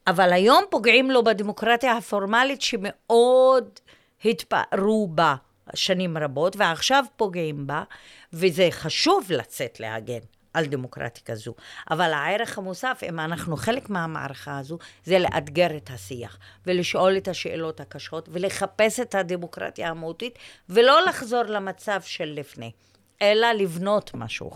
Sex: female